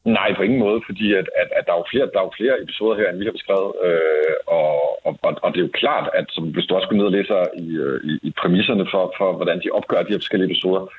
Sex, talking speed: male, 285 wpm